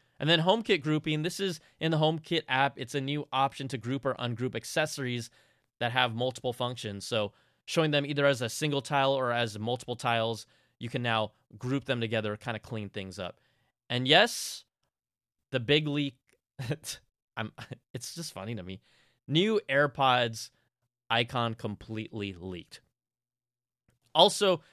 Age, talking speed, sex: 20-39, 155 wpm, male